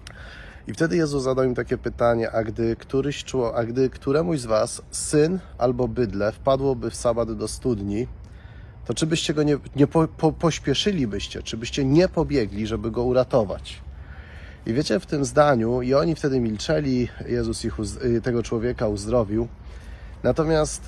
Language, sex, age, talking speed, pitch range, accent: Polish, male, 30-49, 160 wpm, 110-145 Hz, native